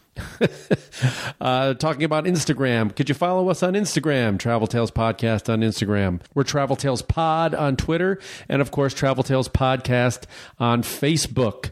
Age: 40-59